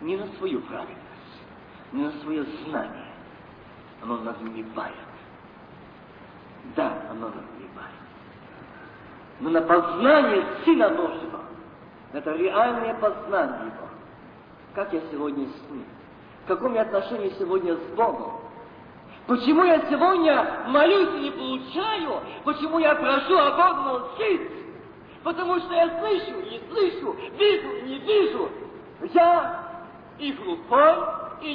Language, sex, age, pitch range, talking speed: Russian, male, 40-59, 235-350 Hz, 110 wpm